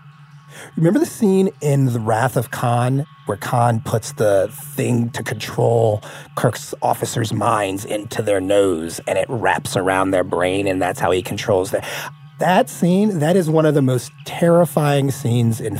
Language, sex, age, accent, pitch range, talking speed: English, male, 30-49, American, 110-145 Hz, 165 wpm